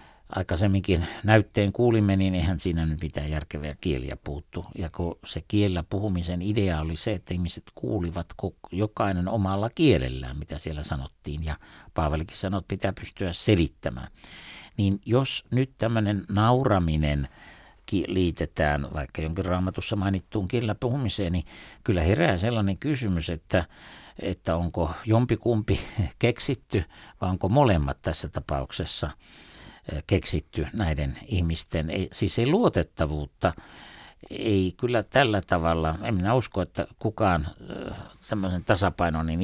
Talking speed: 125 wpm